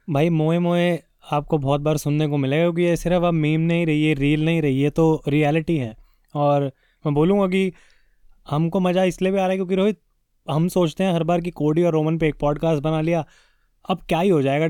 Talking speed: 230 wpm